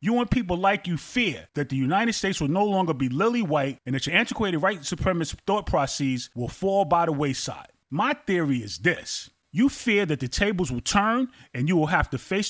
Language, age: English, 30-49